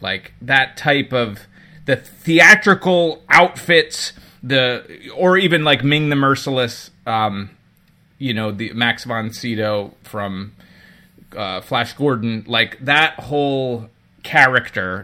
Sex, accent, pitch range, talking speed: male, American, 110-140 Hz, 115 wpm